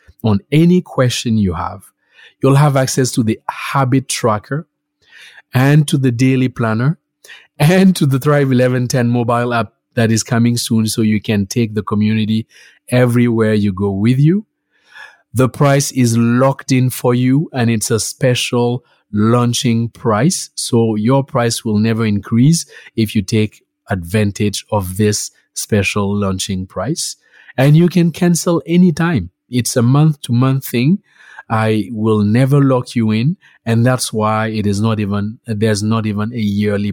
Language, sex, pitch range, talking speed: English, male, 105-135 Hz, 155 wpm